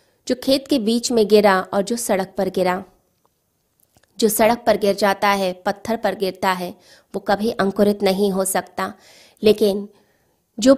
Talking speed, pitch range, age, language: 160 wpm, 195-220 Hz, 20-39, Hindi